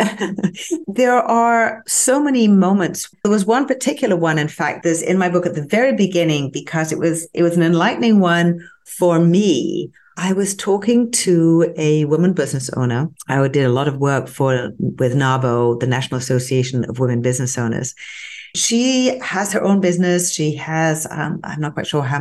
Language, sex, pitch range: English, female, 160-195 Hz